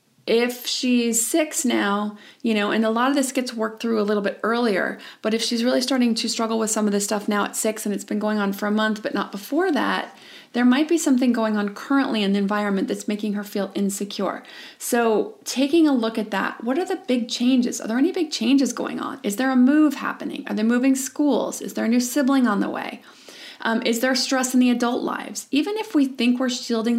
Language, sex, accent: English, female, American